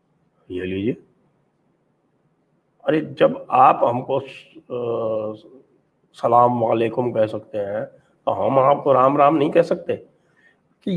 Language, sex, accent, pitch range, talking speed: English, male, Indian, 125-180 Hz, 110 wpm